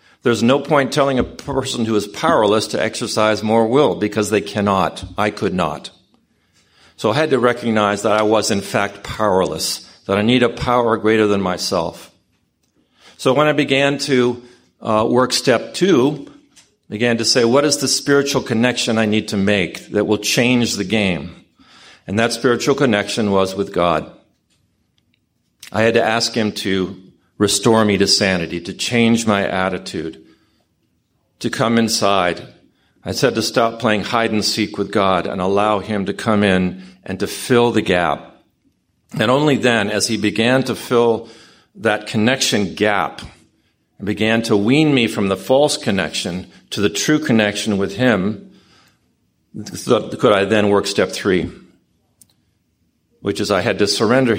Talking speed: 160 wpm